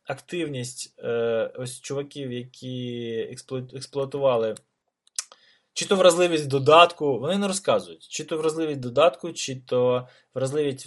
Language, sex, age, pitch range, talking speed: English, male, 20-39, 115-170 Hz, 105 wpm